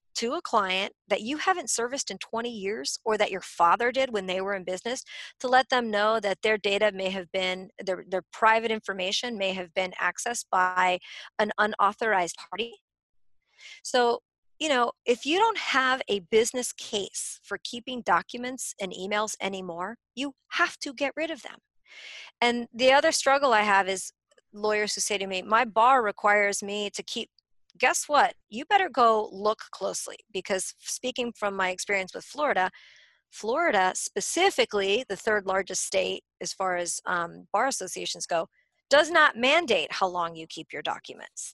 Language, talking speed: English, 170 wpm